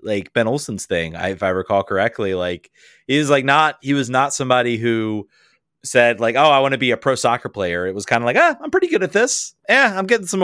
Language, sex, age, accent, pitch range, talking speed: English, male, 30-49, American, 105-145 Hz, 255 wpm